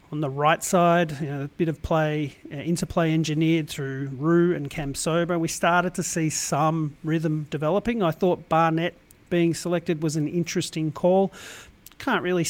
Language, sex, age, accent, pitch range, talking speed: English, male, 40-59, Australian, 155-180 Hz, 175 wpm